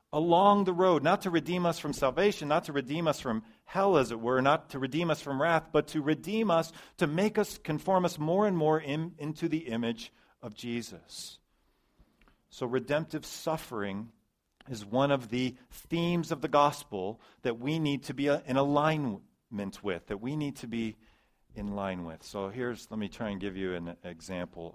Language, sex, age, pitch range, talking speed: English, male, 40-59, 100-150 Hz, 190 wpm